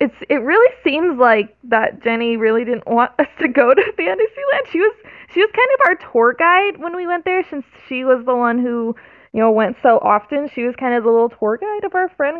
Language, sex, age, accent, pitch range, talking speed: English, female, 20-39, American, 230-320 Hz, 240 wpm